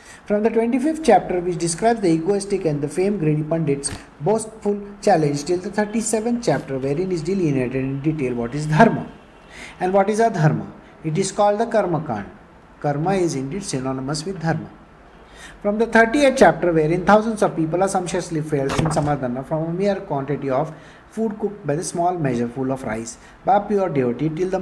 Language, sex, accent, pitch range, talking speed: English, male, Indian, 150-200 Hz, 185 wpm